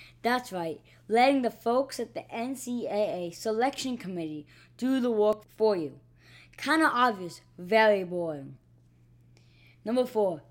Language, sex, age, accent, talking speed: English, female, 20-39, American, 125 wpm